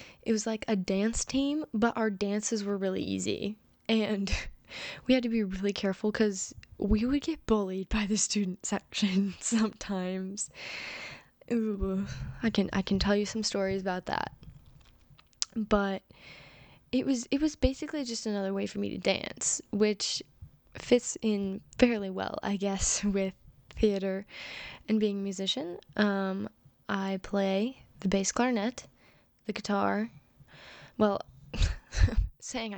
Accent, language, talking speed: American, English, 135 wpm